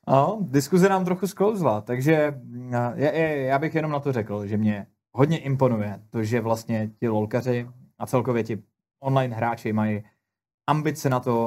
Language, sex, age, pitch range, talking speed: Czech, male, 20-39, 115-145 Hz, 160 wpm